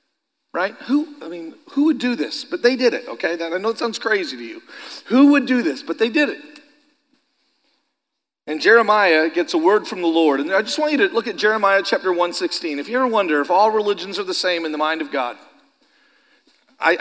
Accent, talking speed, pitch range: American, 225 wpm, 185-285 Hz